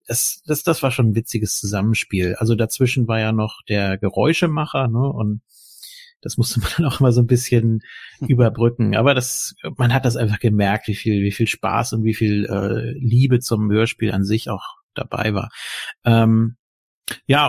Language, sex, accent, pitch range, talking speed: German, male, German, 110-130 Hz, 180 wpm